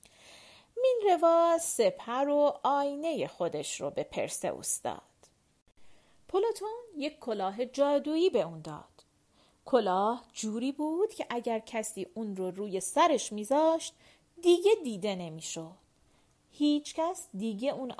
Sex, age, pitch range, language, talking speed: female, 40-59, 205-310 Hz, Persian, 115 wpm